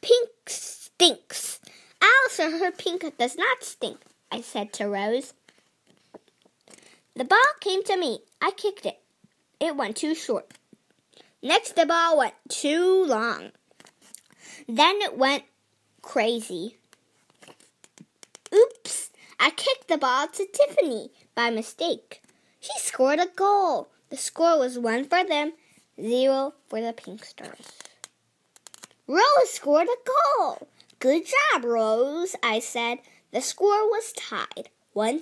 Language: Chinese